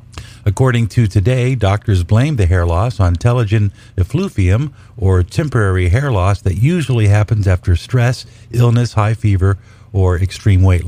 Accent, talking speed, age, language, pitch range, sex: American, 145 wpm, 50-69, English, 95-120 Hz, male